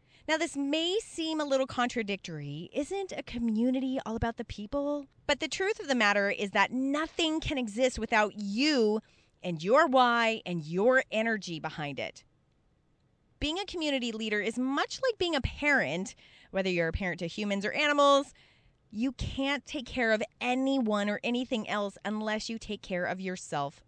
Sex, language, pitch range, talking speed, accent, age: female, English, 200-280 Hz, 170 wpm, American, 30-49